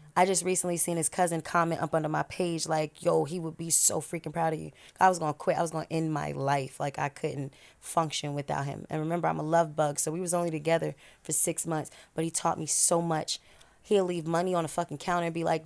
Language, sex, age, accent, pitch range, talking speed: English, female, 20-39, American, 155-180 Hz, 260 wpm